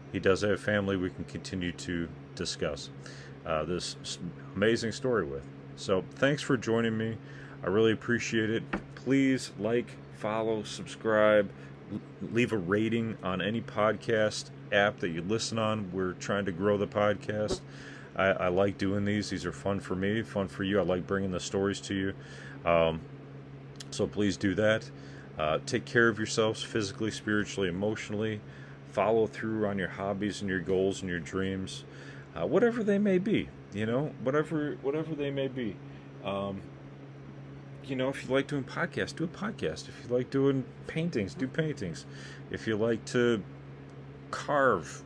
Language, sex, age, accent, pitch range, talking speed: English, male, 40-59, American, 85-115 Hz, 165 wpm